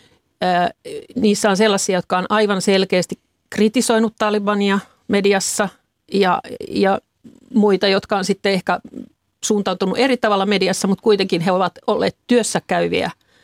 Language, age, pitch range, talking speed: Finnish, 50-69, 190-235 Hz, 125 wpm